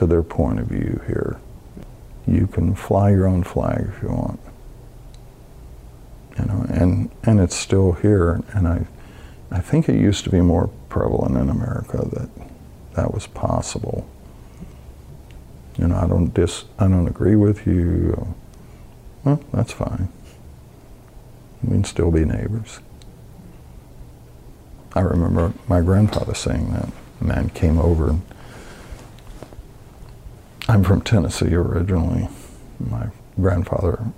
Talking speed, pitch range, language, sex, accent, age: 125 wpm, 90-115 Hz, English, male, American, 50-69